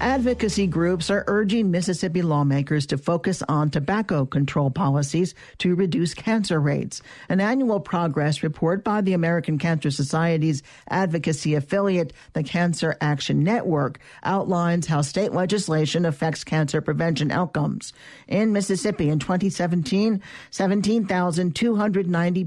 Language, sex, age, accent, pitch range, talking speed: English, male, 50-69, American, 155-195 Hz, 120 wpm